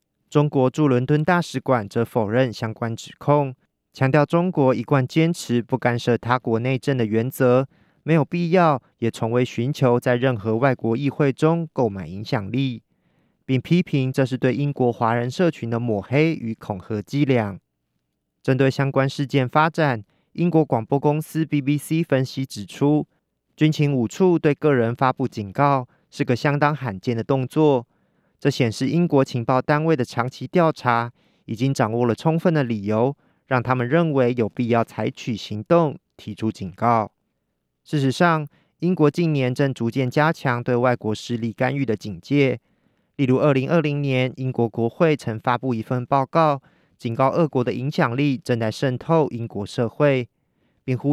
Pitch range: 115-150 Hz